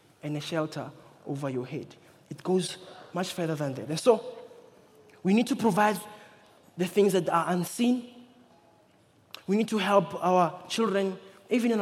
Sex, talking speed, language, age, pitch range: male, 155 wpm, English, 20-39, 165-200 Hz